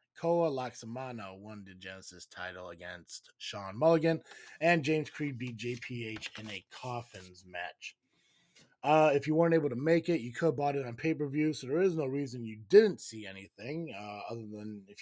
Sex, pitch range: male, 105-150 Hz